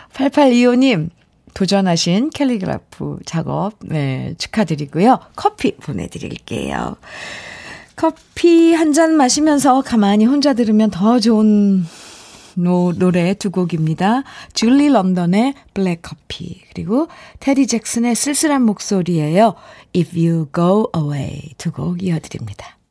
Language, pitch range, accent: Korean, 165-245 Hz, native